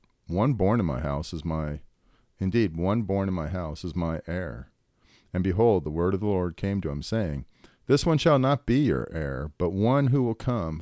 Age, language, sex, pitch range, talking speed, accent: 40-59, English, male, 80-115 Hz, 215 wpm, American